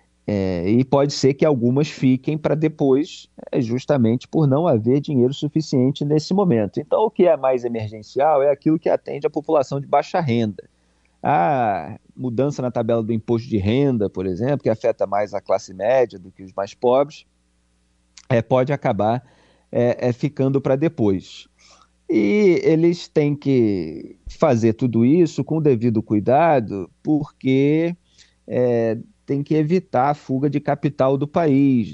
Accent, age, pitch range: Brazilian, 40-59, 115-150 Hz